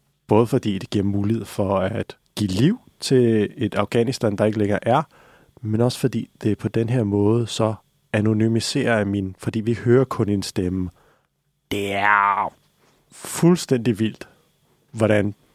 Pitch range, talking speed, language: 110-135 Hz, 145 wpm, Danish